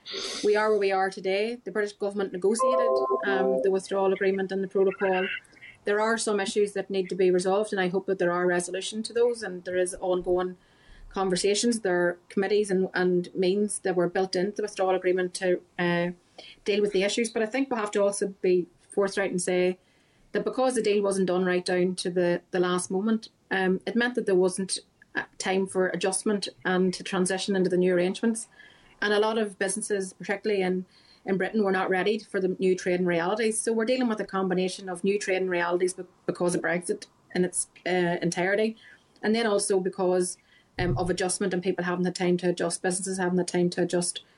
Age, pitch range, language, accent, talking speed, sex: 30-49, 180-200 Hz, English, Irish, 205 wpm, female